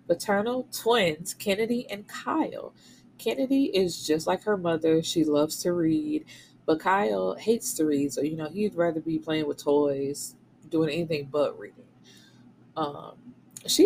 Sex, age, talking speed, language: female, 20-39, 150 wpm, English